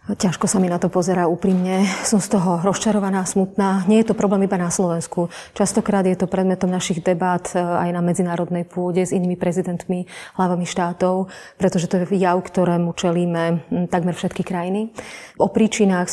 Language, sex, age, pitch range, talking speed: Slovak, female, 30-49, 175-195 Hz, 165 wpm